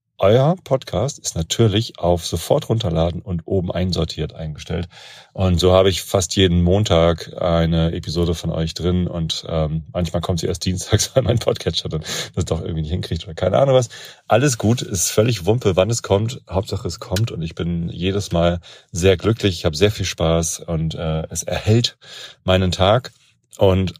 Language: German